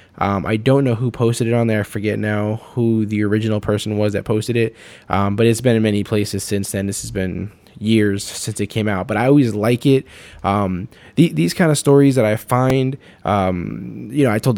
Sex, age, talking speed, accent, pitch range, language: male, 20-39, 230 wpm, American, 105-125 Hz, English